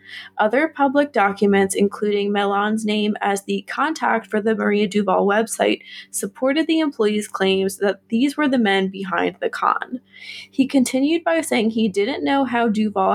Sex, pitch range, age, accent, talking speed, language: female, 200-245 Hz, 20-39, American, 160 wpm, English